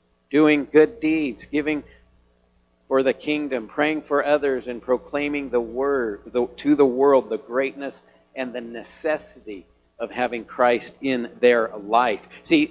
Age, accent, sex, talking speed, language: 50-69, American, male, 140 wpm, English